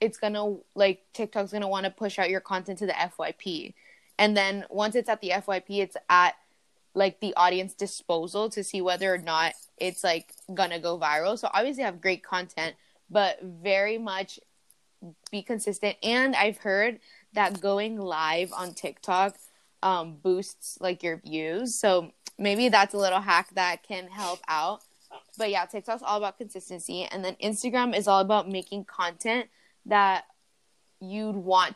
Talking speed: 170 wpm